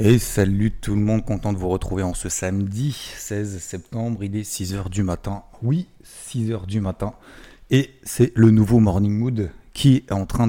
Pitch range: 95-110 Hz